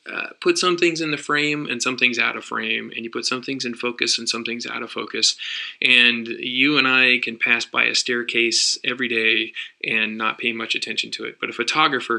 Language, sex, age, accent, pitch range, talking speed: English, male, 20-39, American, 115-130 Hz, 230 wpm